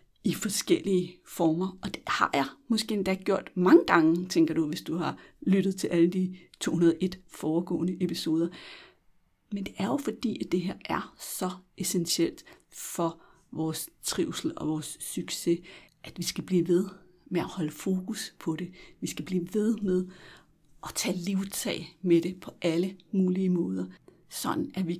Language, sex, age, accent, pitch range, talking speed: Danish, female, 60-79, native, 170-195 Hz, 165 wpm